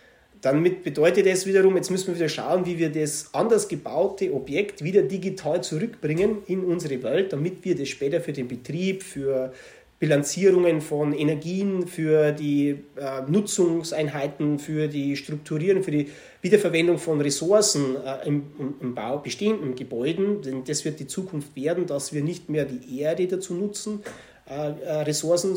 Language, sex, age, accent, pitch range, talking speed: German, male, 30-49, German, 145-180 Hz, 155 wpm